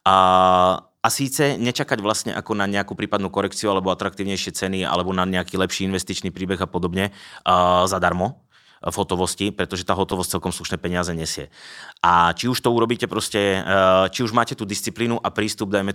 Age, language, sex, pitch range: 20-39, Czech, male, 90-105 Hz